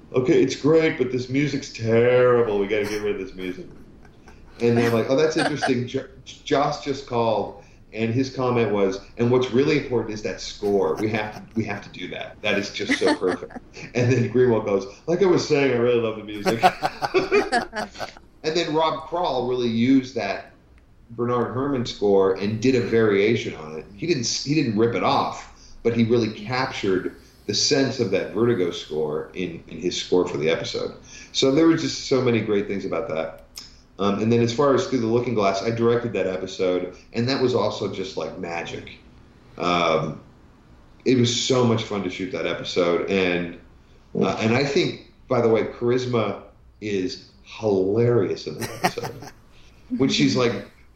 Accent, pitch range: American, 100-130 Hz